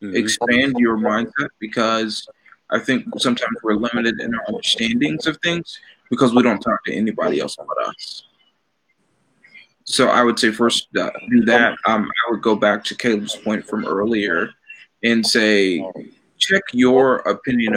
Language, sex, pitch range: English, male, 110-130 Hz